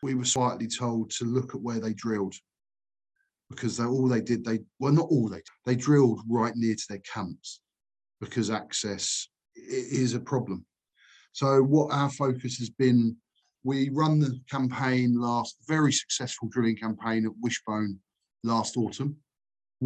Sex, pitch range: male, 120-145 Hz